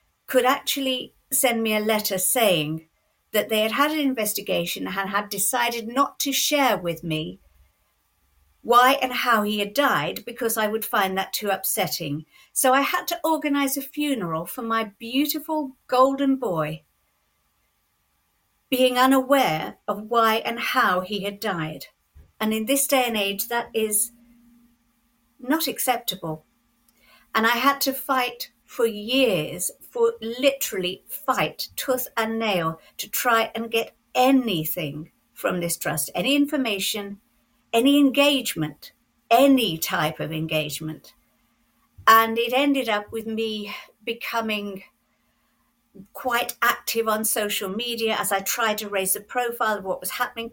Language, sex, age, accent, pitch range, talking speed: English, female, 50-69, British, 200-260 Hz, 140 wpm